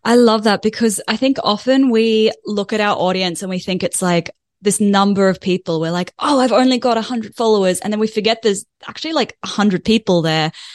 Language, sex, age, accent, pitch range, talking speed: English, female, 20-39, Australian, 175-215 Hz, 230 wpm